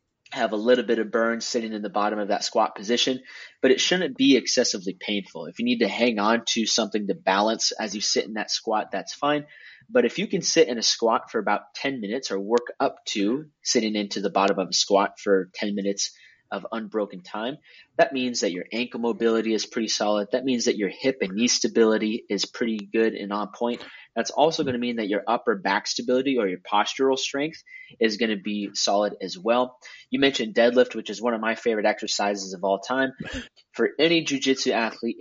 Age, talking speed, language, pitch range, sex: 20-39, 220 wpm, English, 105-130 Hz, male